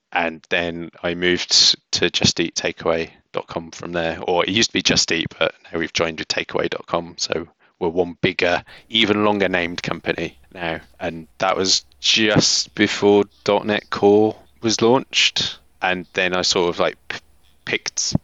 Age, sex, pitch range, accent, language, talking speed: 20-39, male, 85-95 Hz, British, English, 150 wpm